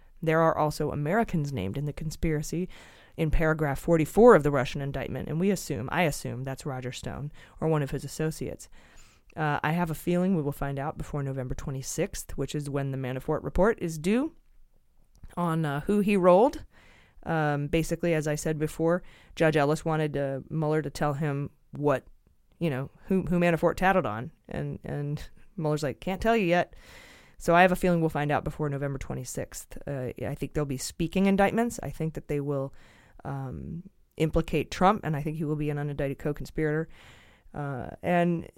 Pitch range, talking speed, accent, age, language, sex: 145-180 Hz, 185 wpm, American, 20-39, English, female